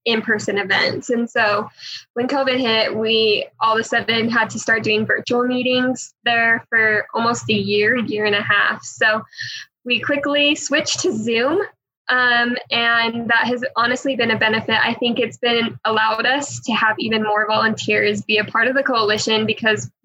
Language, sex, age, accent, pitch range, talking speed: English, female, 10-29, American, 220-245 Hz, 175 wpm